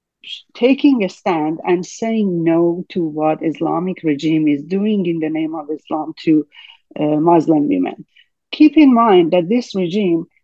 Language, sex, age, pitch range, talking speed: English, female, 50-69, 165-215 Hz, 155 wpm